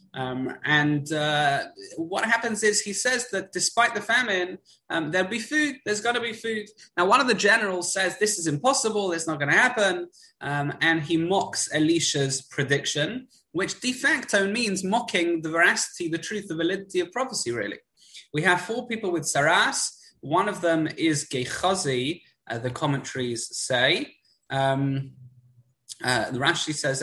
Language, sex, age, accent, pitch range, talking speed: English, male, 20-39, British, 140-205 Hz, 165 wpm